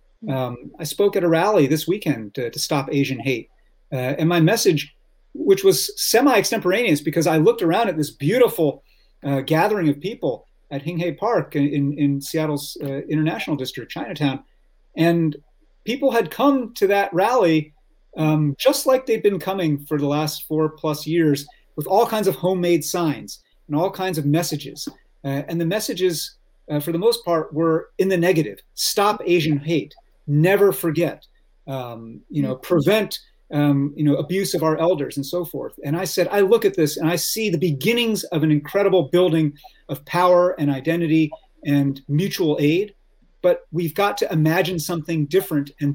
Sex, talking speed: male, 175 wpm